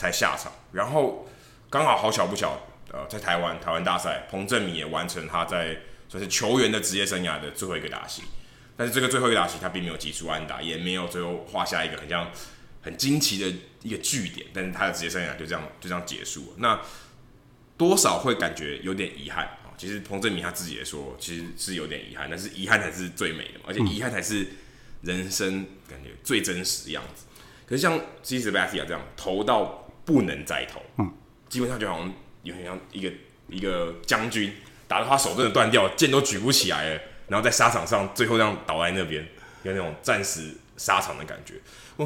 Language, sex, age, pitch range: Chinese, male, 20-39, 85-105 Hz